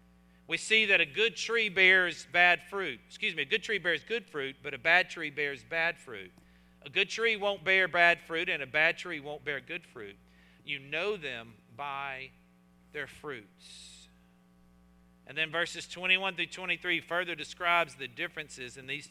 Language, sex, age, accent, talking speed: English, male, 50-69, American, 180 wpm